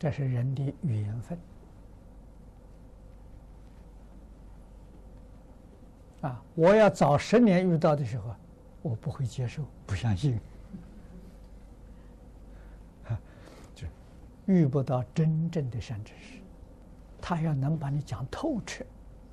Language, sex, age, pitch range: Chinese, male, 60-79, 90-140 Hz